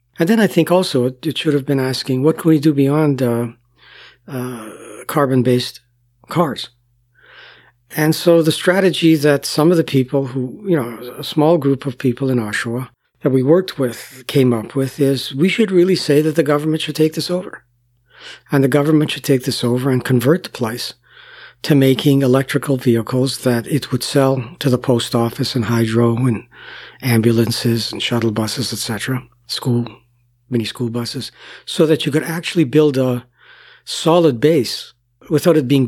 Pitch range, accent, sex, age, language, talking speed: 120-155 Hz, American, male, 60-79, English, 175 wpm